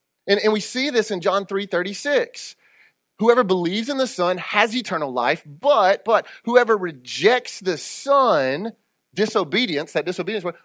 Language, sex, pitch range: English, male, 165-230 Hz